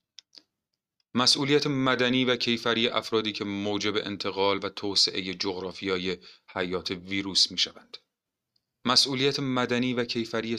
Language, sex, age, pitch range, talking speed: Persian, male, 30-49, 95-110 Hz, 100 wpm